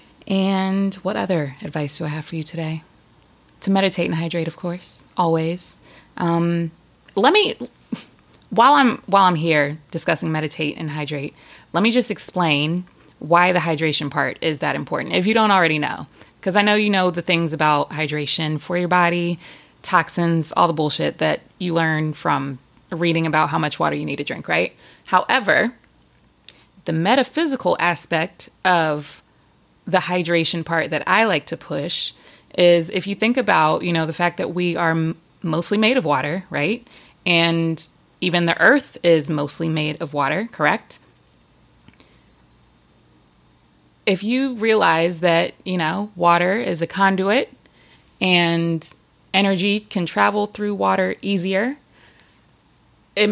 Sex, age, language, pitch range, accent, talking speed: female, 20-39, English, 160-190 Hz, American, 150 wpm